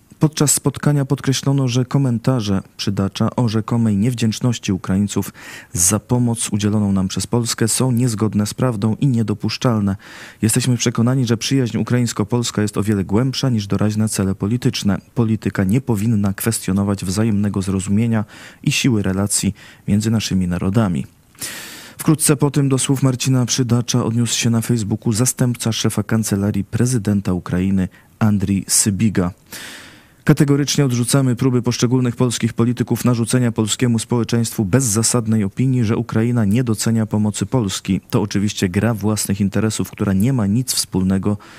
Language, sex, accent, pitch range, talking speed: Polish, male, native, 100-120 Hz, 135 wpm